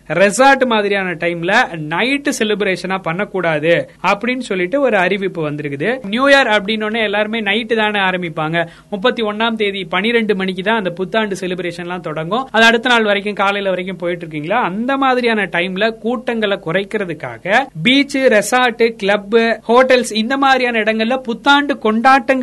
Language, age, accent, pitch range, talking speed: Tamil, 30-49, native, 180-230 Hz, 35 wpm